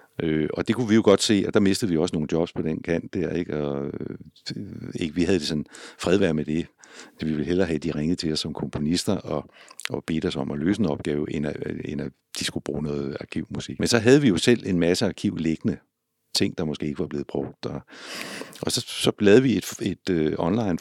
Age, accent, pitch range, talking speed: 60-79, native, 75-90 Hz, 240 wpm